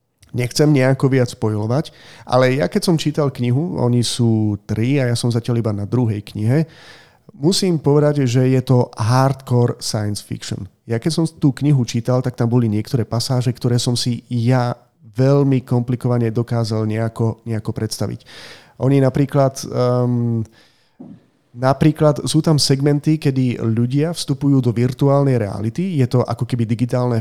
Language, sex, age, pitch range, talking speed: Slovak, male, 30-49, 115-135 Hz, 150 wpm